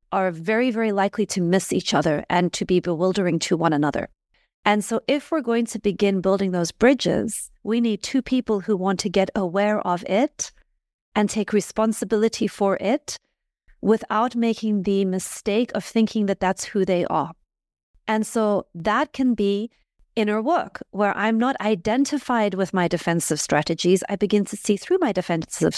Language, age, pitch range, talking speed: English, 40-59, 190-235 Hz, 170 wpm